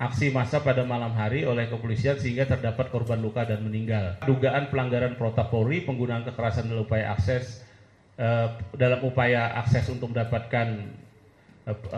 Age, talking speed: 30-49, 145 wpm